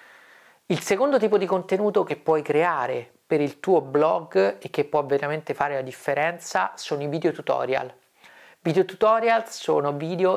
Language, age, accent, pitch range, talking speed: Italian, 30-49, native, 145-200 Hz, 155 wpm